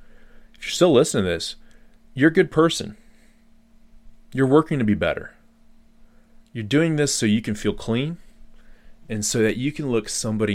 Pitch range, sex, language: 95-145 Hz, male, English